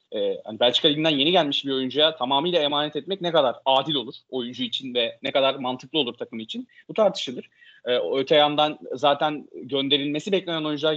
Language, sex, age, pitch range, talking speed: Turkish, male, 30-49, 130-170 Hz, 180 wpm